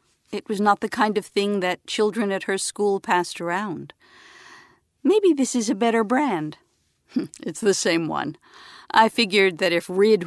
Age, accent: 50-69, American